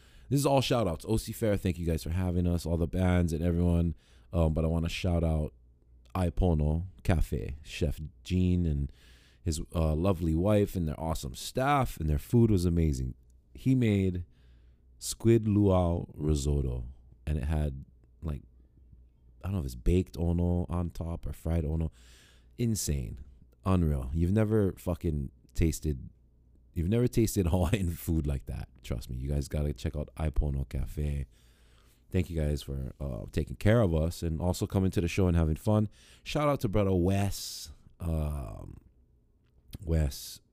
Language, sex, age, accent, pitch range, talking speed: English, male, 20-39, American, 70-90 Hz, 165 wpm